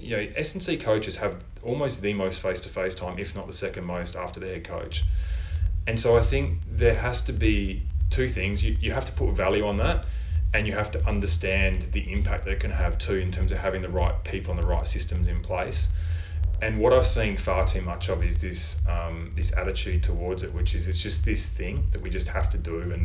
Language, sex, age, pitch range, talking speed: English, male, 20-39, 80-95 Hz, 235 wpm